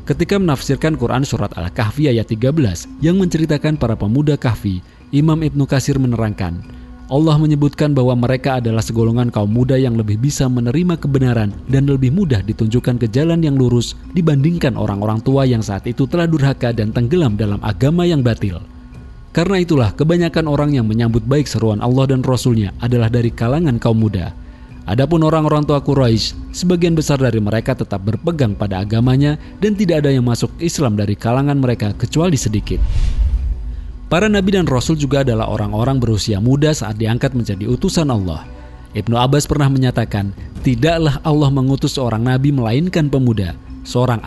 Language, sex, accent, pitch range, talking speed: Indonesian, male, native, 110-145 Hz, 155 wpm